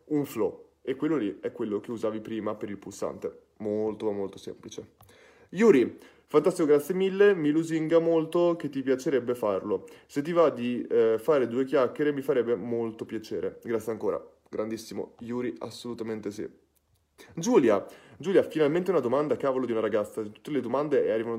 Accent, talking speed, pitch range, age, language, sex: native, 165 wpm, 120-170 Hz, 20-39, Italian, male